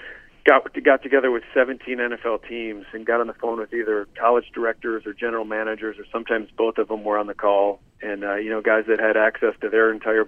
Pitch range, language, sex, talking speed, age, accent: 105-115 Hz, English, male, 230 wpm, 40-59, American